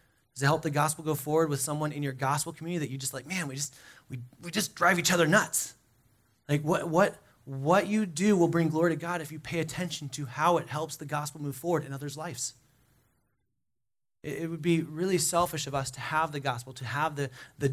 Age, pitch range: 20-39, 130-165 Hz